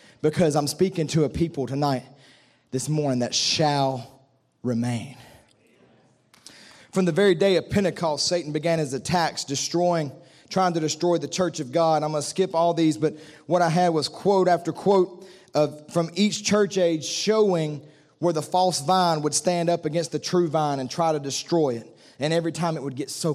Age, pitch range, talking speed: 30-49, 140-170 Hz, 190 wpm